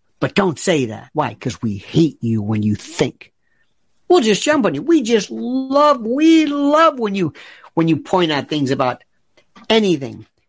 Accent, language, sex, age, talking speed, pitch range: American, English, male, 50-69, 175 wpm, 135-220 Hz